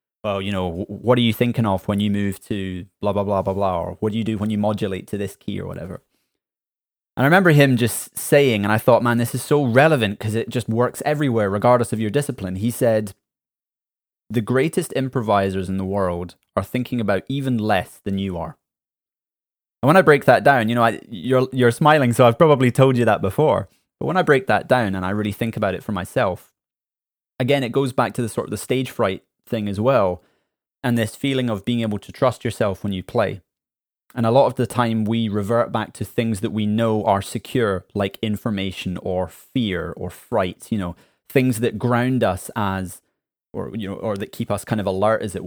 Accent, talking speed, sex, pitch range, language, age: British, 220 wpm, male, 100-125 Hz, English, 20-39